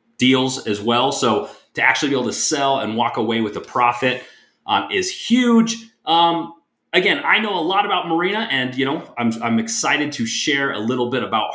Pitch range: 110-145 Hz